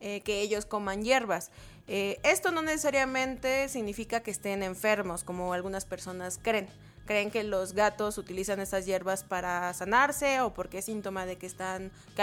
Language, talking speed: Spanish, 165 wpm